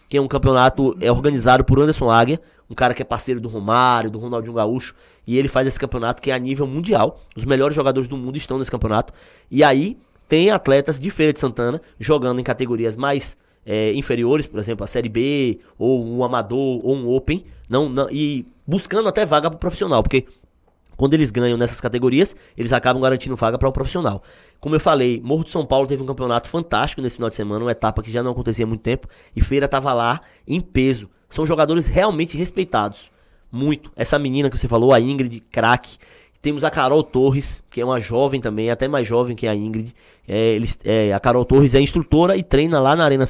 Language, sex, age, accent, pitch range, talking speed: Portuguese, male, 20-39, Brazilian, 115-145 Hz, 215 wpm